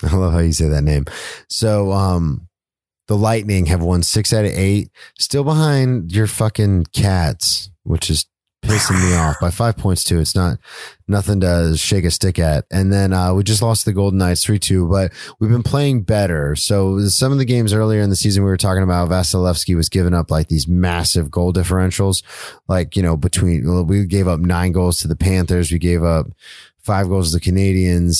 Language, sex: English, male